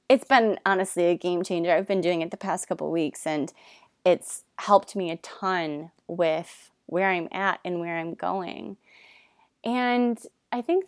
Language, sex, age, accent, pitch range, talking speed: English, female, 20-39, American, 180-250 Hz, 170 wpm